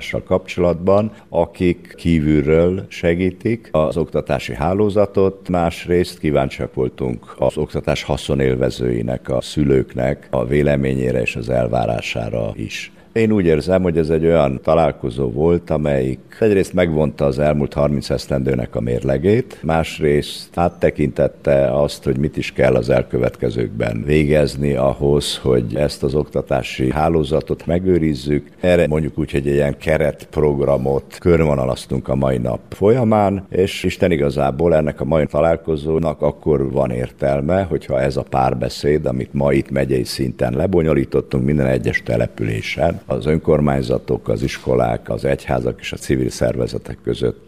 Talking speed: 130 wpm